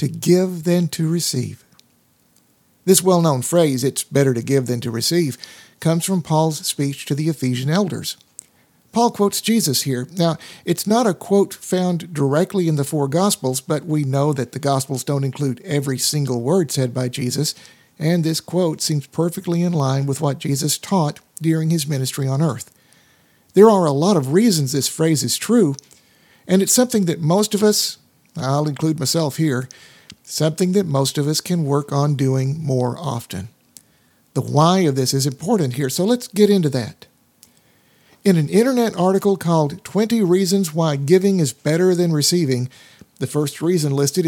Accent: American